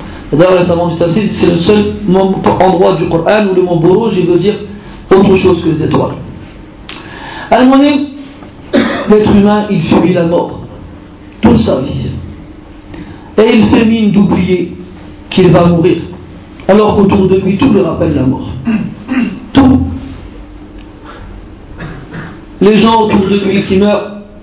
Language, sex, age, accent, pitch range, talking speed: French, male, 50-69, French, 170-215 Hz, 140 wpm